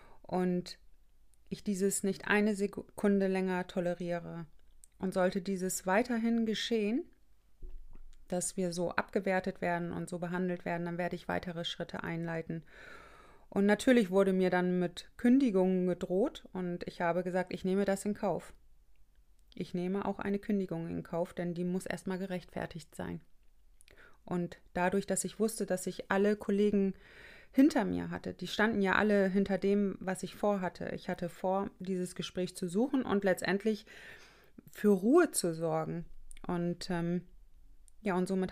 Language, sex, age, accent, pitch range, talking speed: German, female, 30-49, German, 180-210 Hz, 150 wpm